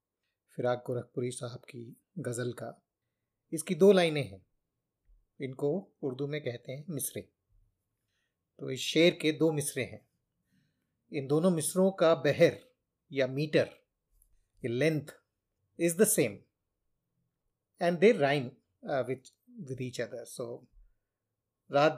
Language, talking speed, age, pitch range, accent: Hindi, 110 wpm, 30-49, 125-190 Hz, native